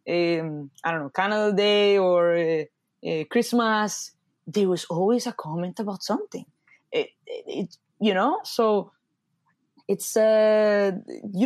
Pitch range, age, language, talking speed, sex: 175-240 Hz, 20-39, English, 135 wpm, female